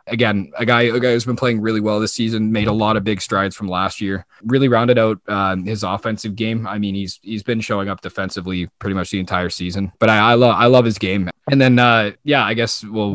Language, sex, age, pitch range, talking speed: English, male, 20-39, 95-110 Hz, 255 wpm